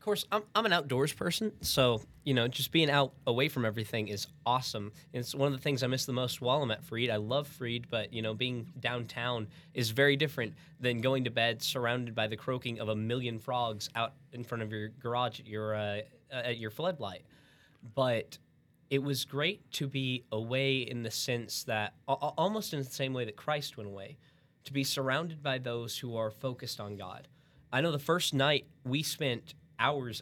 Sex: male